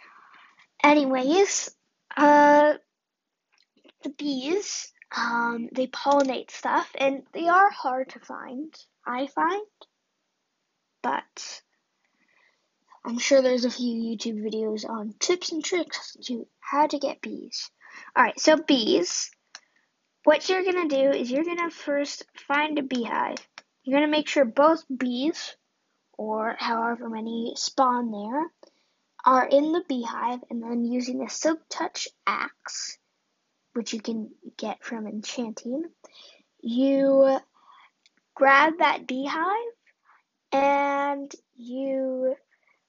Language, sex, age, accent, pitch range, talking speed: English, female, 10-29, American, 245-300 Hz, 120 wpm